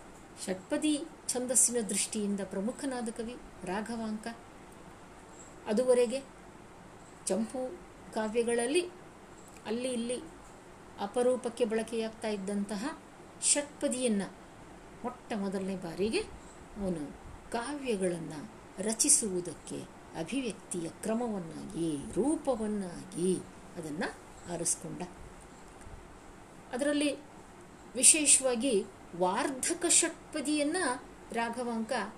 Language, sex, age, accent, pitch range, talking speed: Kannada, female, 50-69, native, 200-285 Hz, 60 wpm